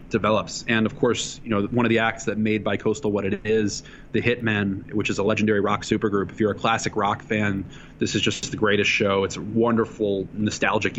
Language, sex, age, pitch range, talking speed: English, male, 20-39, 100-110 Hz, 225 wpm